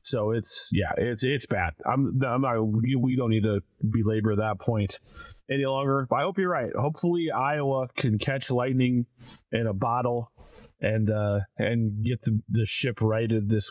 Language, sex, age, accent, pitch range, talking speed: English, male, 30-49, American, 105-135 Hz, 175 wpm